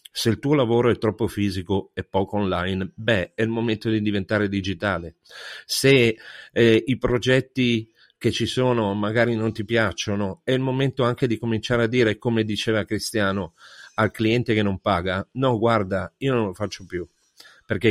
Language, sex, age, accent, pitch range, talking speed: Italian, male, 40-59, native, 100-120 Hz, 175 wpm